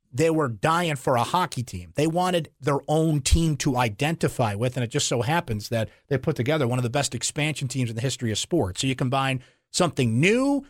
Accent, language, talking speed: American, English, 225 wpm